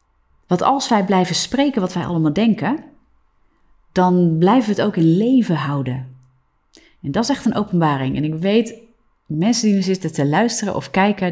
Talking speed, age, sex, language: 180 wpm, 30-49, female, Dutch